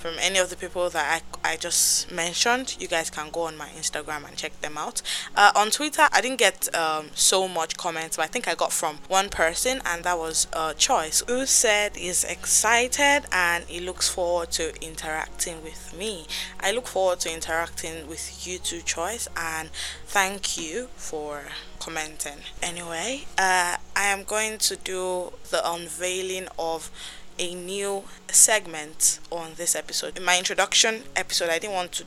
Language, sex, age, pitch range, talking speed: English, female, 10-29, 160-190 Hz, 180 wpm